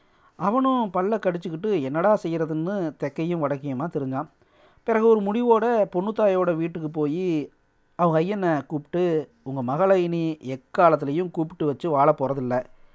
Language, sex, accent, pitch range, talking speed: Tamil, male, native, 140-180 Hz, 115 wpm